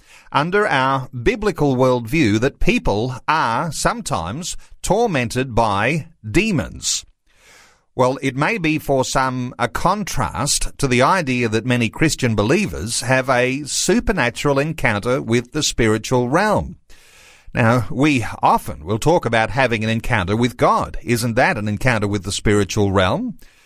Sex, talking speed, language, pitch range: male, 135 wpm, English, 115-150 Hz